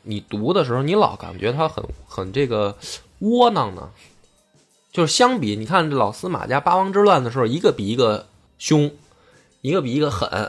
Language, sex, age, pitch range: Chinese, male, 20-39, 105-170 Hz